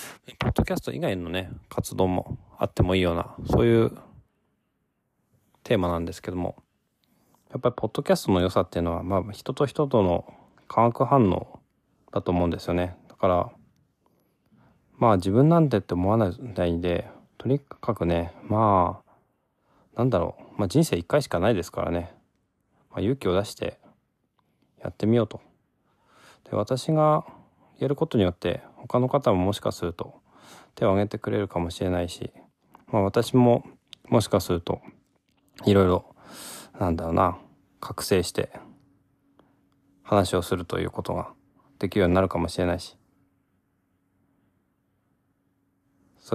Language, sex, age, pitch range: Japanese, male, 20-39, 90-115 Hz